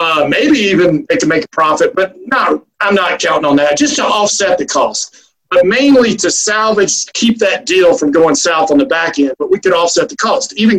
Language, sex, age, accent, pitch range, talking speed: English, male, 50-69, American, 160-230 Hz, 230 wpm